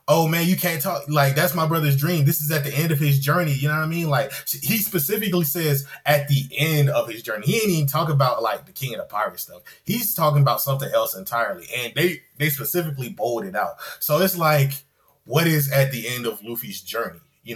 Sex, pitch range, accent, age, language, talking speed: male, 140-175 Hz, American, 20-39, English, 235 wpm